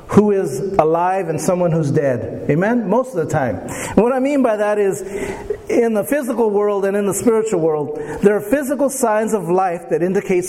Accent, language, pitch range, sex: American, English, 180-240 Hz, male